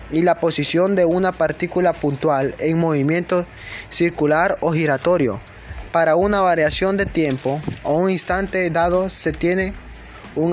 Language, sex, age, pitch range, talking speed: Spanish, male, 20-39, 140-175 Hz, 135 wpm